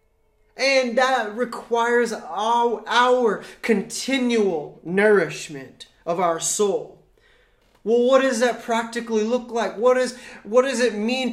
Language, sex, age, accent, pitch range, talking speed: English, male, 20-39, American, 220-250 Hz, 120 wpm